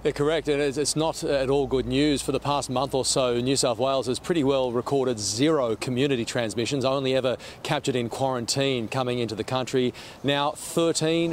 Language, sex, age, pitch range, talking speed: English, male, 40-59, 125-140 Hz, 190 wpm